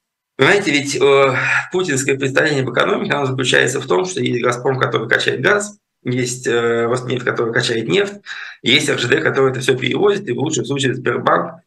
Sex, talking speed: male, 175 wpm